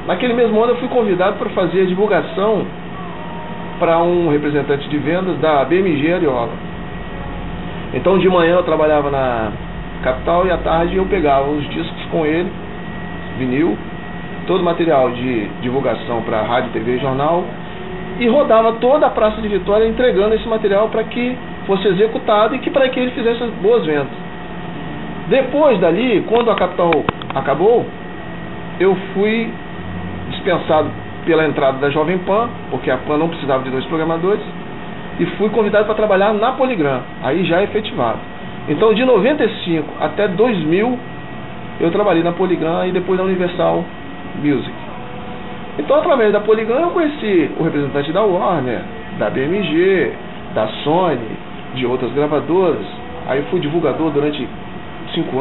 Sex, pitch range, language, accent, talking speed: male, 150-215 Hz, Portuguese, Brazilian, 150 wpm